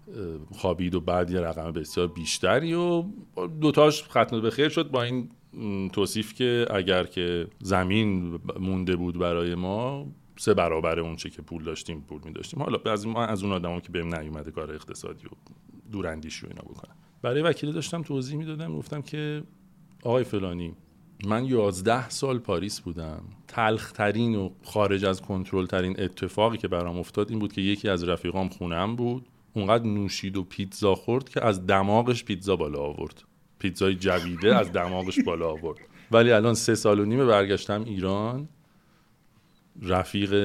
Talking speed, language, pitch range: 155 wpm, Persian, 90-120 Hz